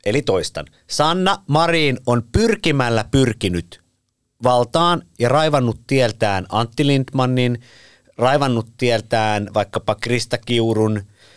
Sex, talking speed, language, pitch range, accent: male, 95 wpm, Finnish, 105-130 Hz, native